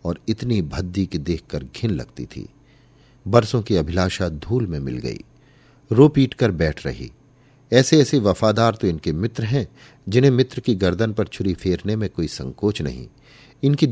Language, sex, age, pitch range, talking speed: Hindi, male, 50-69, 85-125 Hz, 170 wpm